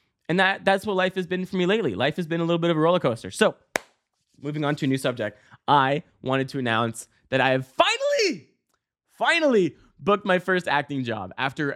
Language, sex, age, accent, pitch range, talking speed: English, male, 20-39, American, 120-155 Hz, 215 wpm